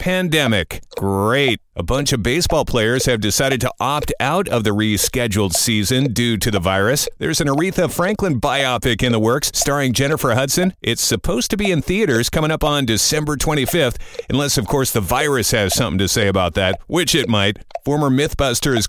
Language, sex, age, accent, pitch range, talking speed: English, male, 50-69, American, 110-145 Hz, 185 wpm